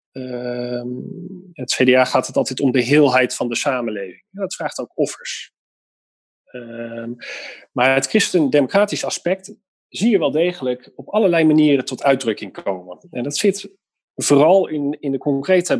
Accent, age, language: Dutch, 40-59, Dutch